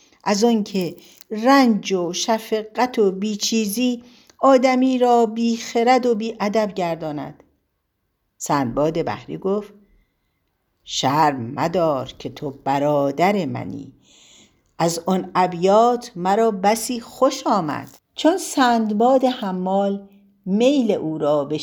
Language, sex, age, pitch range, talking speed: Persian, female, 60-79, 150-210 Hz, 100 wpm